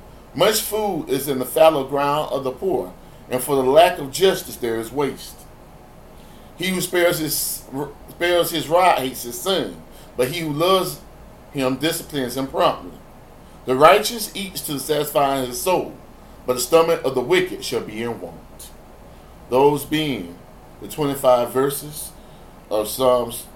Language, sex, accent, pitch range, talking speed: English, male, American, 105-150 Hz, 160 wpm